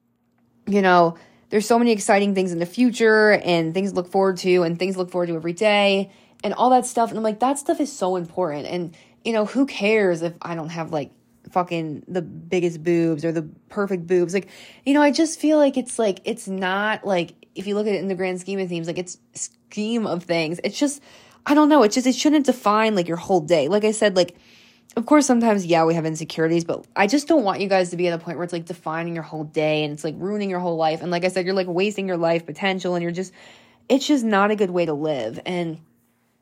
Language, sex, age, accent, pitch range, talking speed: English, female, 20-39, American, 165-215 Hz, 255 wpm